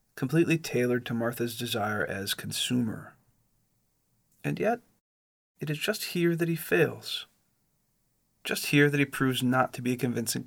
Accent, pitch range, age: American, 115-145 Hz, 40-59